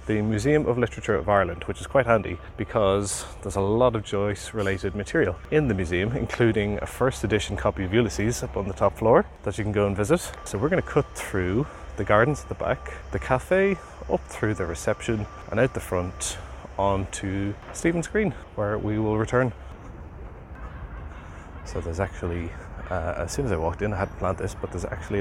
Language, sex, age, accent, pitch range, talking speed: English, male, 30-49, Irish, 90-115 Hz, 200 wpm